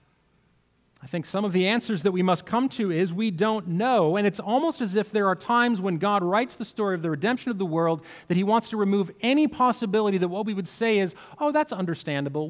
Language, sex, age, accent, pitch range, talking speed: English, male, 40-59, American, 150-215 Hz, 240 wpm